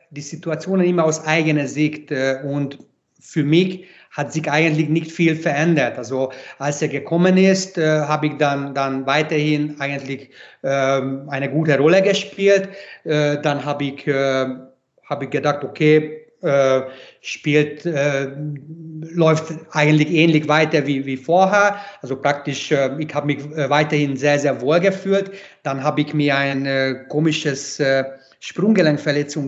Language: German